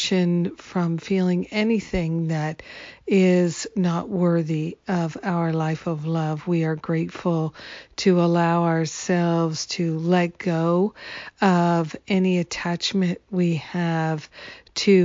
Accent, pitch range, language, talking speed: American, 170-190 Hz, English, 110 wpm